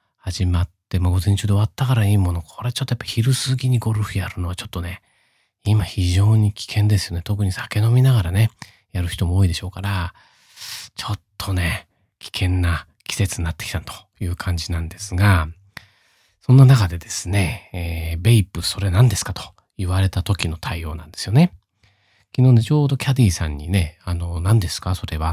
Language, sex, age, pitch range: Japanese, male, 40-59, 90-115 Hz